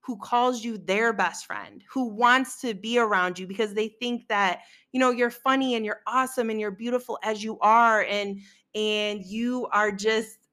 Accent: American